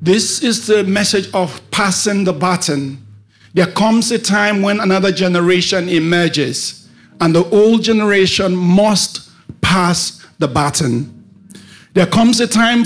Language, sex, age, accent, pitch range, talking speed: English, male, 50-69, Nigerian, 155-215 Hz, 130 wpm